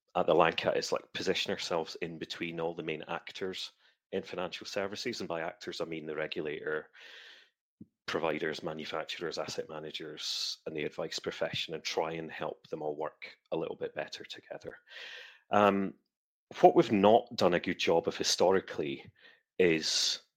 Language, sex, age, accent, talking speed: English, male, 30-49, British, 155 wpm